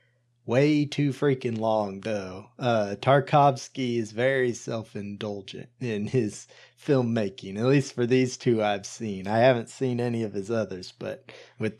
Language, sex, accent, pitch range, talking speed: English, male, American, 110-130 Hz, 145 wpm